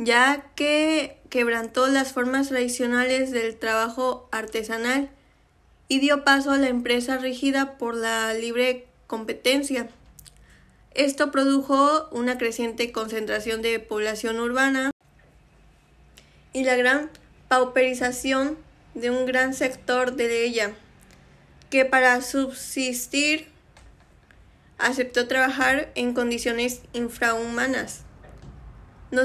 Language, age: Spanish, 10-29